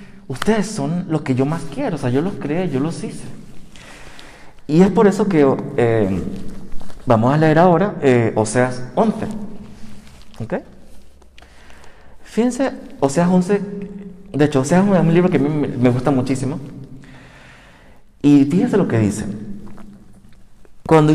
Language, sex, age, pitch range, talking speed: Spanish, male, 50-69, 125-190 Hz, 140 wpm